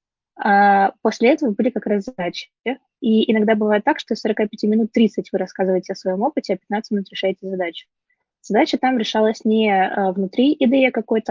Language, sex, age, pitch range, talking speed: Russian, female, 20-39, 190-230 Hz, 165 wpm